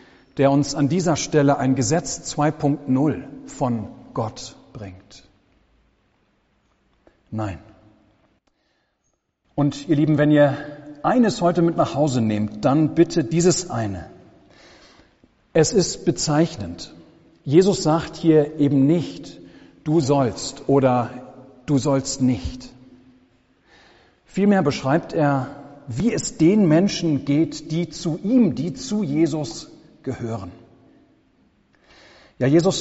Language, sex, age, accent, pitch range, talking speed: German, male, 40-59, German, 130-165 Hz, 105 wpm